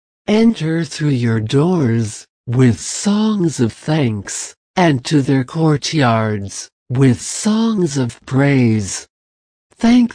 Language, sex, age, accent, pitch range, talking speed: English, male, 60-79, American, 110-155 Hz, 100 wpm